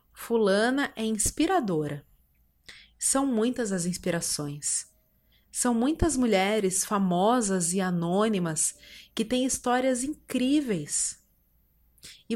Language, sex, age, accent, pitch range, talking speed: Portuguese, female, 30-49, Brazilian, 175-250 Hz, 85 wpm